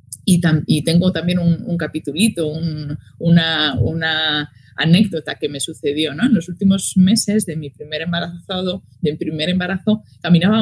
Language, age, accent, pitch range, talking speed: Spanish, 20-39, Spanish, 155-205 Hz, 130 wpm